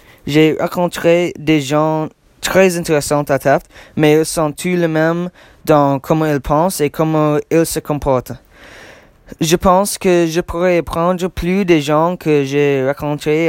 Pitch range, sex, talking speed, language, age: 140-165 Hz, male, 155 wpm, English, 20-39